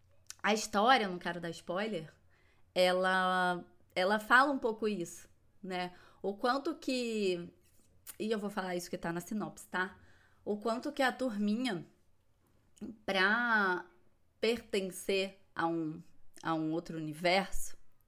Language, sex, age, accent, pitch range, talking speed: Portuguese, female, 20-39, Brazilian, 170-220 Hz, 130 wpm